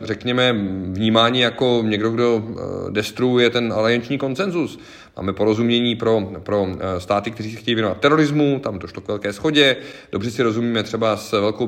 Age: 40-59